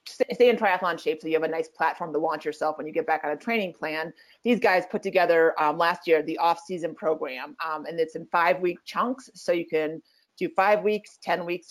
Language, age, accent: English, 30-49, American